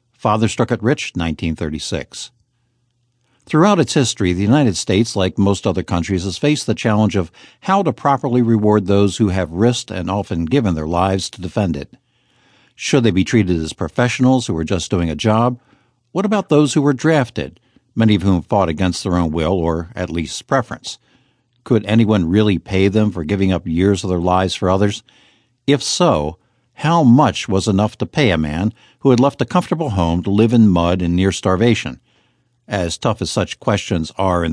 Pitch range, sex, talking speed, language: 90-120 Hz, male, 190 wpm, English